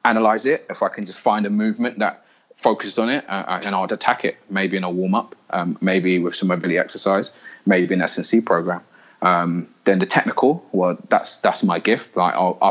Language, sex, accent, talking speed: English, male, British, 205 wpm